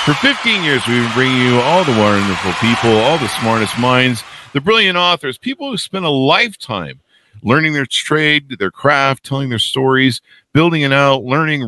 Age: 50-69